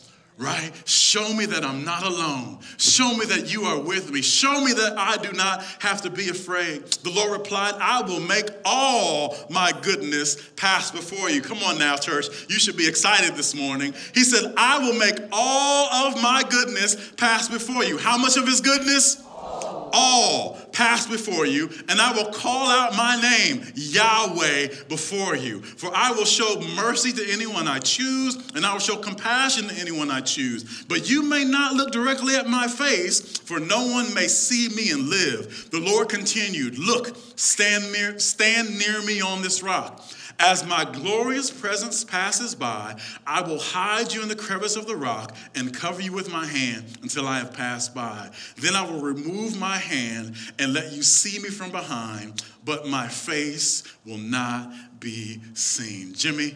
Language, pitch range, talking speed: English, 150-235 Hz, 180 wpm